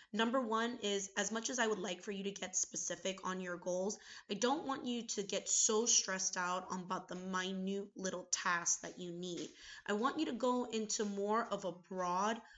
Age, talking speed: 20-39, 210 wpm